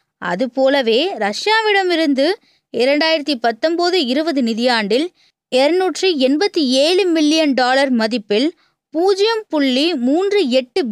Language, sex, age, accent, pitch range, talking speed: Tamil, female, 20-39, native, 245-340 Hz, 90 wpm